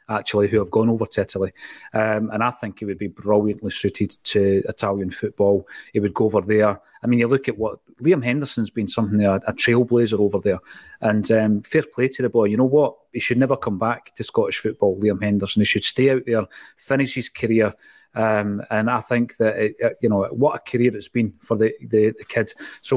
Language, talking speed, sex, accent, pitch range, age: English, 225 wpm, male, British, 105-125 Hz, 30-49